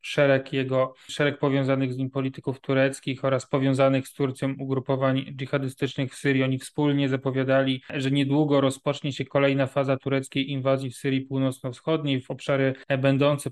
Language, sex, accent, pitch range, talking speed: Polish, male, native, 135-145 Hz, 145 wpm